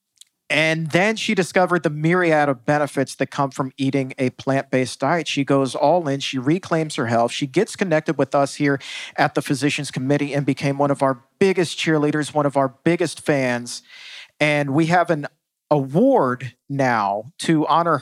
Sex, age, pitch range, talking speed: male, 50-69, 135-165 Hz, 175 wpm